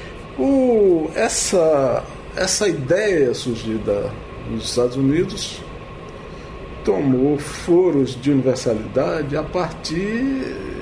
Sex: male